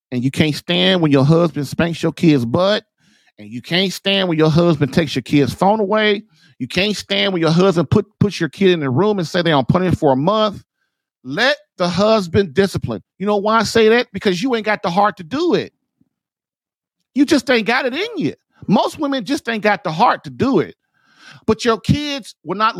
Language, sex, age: English, male, 40-59